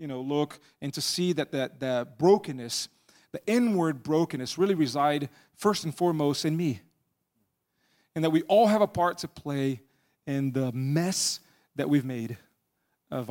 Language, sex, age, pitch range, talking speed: English, male, 30-49, 135-165 Hz, 160 wpm